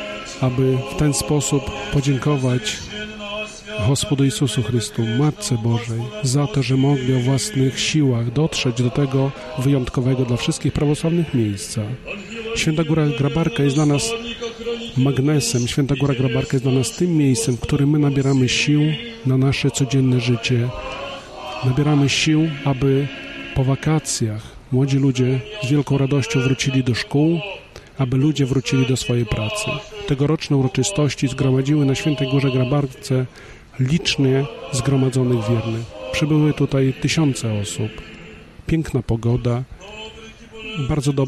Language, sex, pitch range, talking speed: Polish, male, 125-145 Hz, 125 wpm